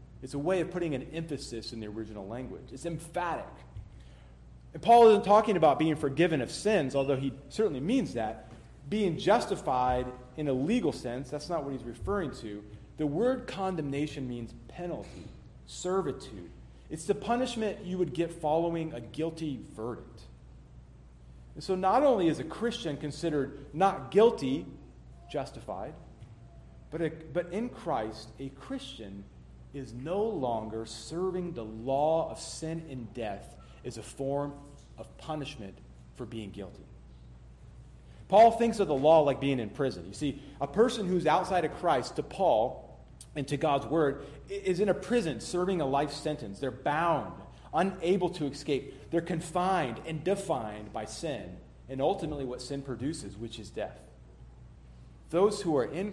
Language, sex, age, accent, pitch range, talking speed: English, male, 30-49, American, 110-170 Hz, 155 wpm